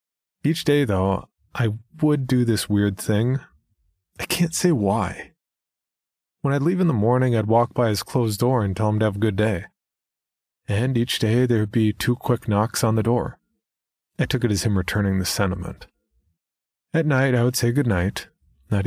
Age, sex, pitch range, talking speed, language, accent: 30-49, male, 95-120 Hz, 190 wpm, English, American